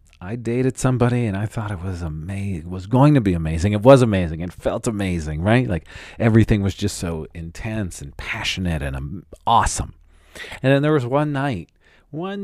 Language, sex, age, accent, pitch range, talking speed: English, male, 40-59, American, 80-115 Hz, 190 wpm